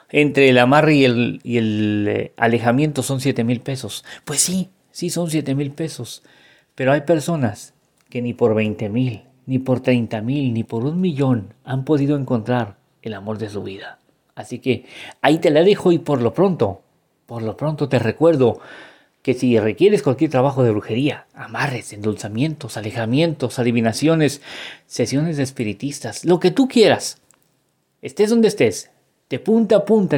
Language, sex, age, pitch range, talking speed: Spanish, male, 40-59, 120-155 Hz, 160 wpm